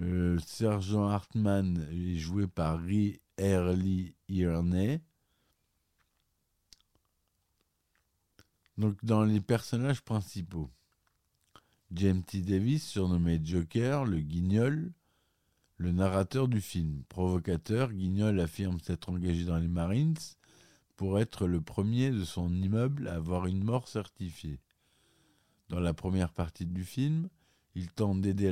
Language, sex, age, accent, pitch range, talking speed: French, male, 50-69, French, 85-105 Hz, 115 wpm